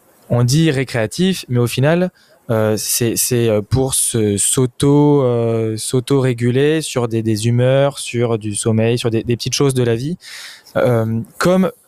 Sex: male